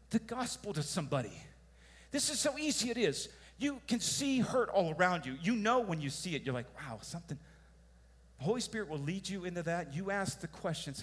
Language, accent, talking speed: English, American, 210 wpm